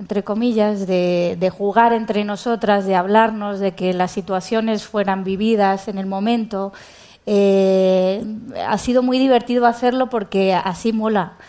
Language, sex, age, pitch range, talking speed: Spanish, female, 20-39, 190-225 Hz, 140 wpm